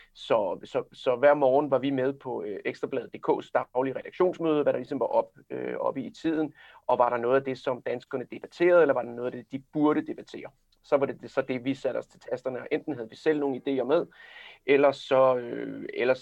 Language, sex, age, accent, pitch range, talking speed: Danish, male, 30-49, native, 120-150 Hz, 220 wpm